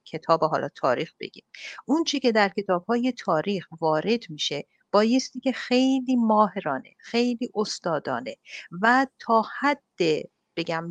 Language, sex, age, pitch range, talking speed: English, female, 50-69, 170-230 Hz, 125 wpm